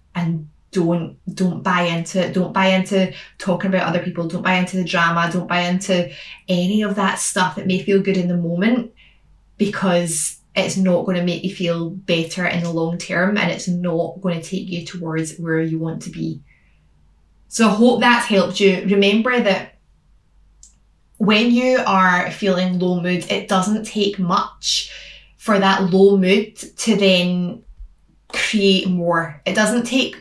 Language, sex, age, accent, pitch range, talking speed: English, female, 10-29, British, 175-205 Hz, 175 wpm